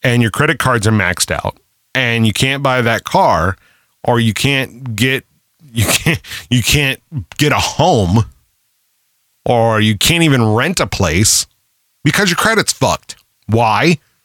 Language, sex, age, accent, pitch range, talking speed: English, male, 30-49, American, 110-145 Hz, 150 wpm